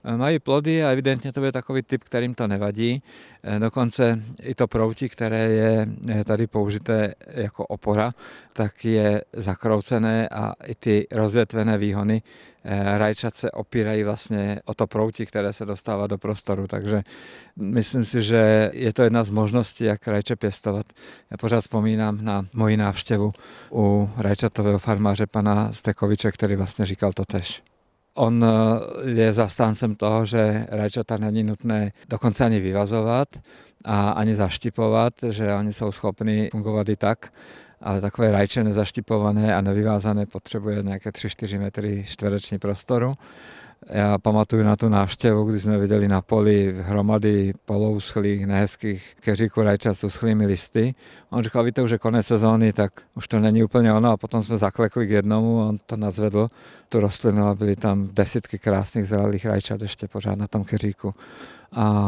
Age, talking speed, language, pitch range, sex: 50-69, 150 wpm, Czech, 105-115 Hz, male